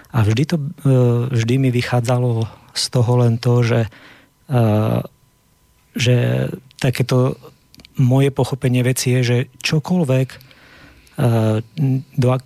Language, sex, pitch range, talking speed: Slovak, male, 115-130 Hz, 95 wpm